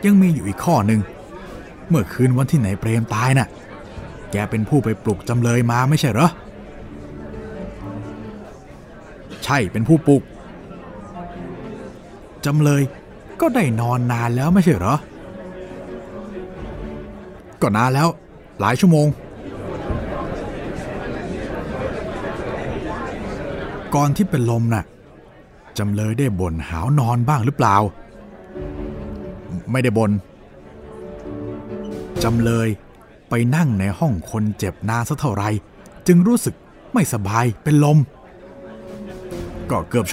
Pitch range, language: 105-150 Hz, Thai